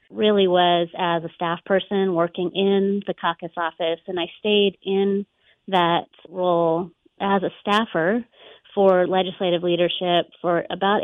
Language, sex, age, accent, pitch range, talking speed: English, female, 30-49, American, 175-195 Hz, 135 wpm